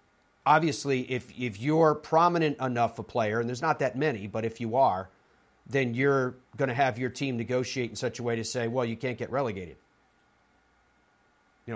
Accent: American